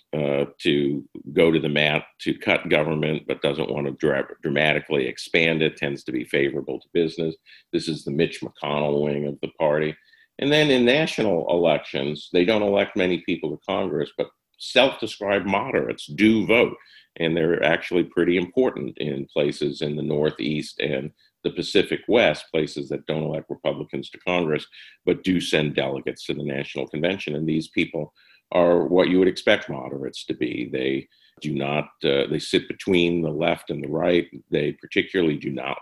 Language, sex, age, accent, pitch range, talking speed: English, male, 50-69, American, 75-90 Hz, 175 wpm